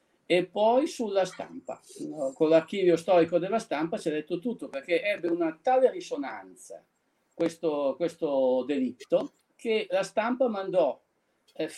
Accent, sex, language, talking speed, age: native, male, Italian, 125 wpm, 50-69